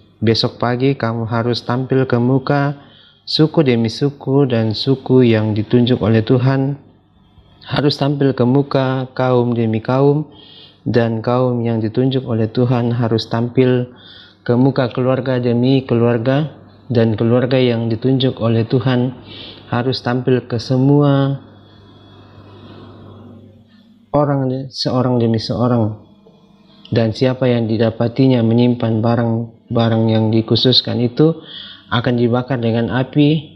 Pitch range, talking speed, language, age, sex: 115-130 Hz, 115 wpm, Indonesian, 30-49, male